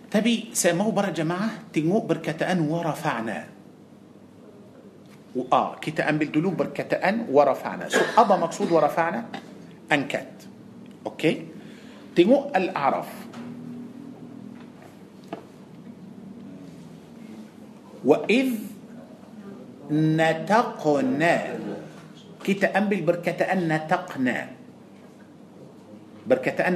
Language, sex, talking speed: Malay, male, 70 wpm